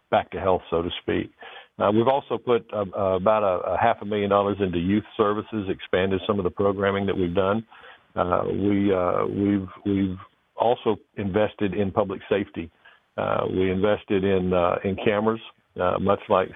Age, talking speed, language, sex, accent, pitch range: 50-69, 180 wpm, English, male, American, 95-105 Hz